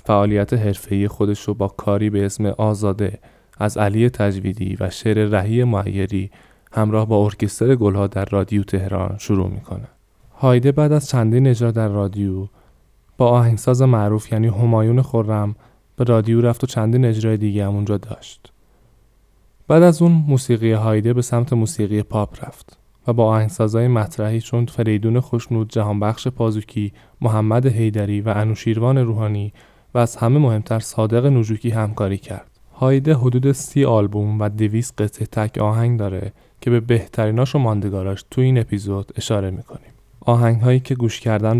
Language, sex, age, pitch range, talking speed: Persian, male, 20-39, 105-120 Hz, 150 wpm